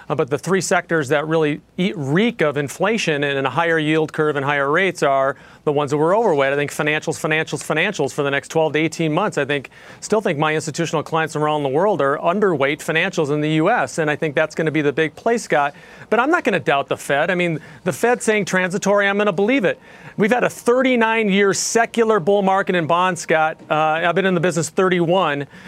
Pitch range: 155-205 Hz